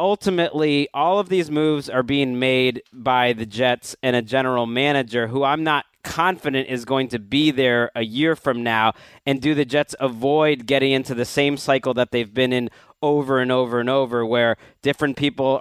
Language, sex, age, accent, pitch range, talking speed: English, male, 30-49, American, 130-150 Hz, 190 wpm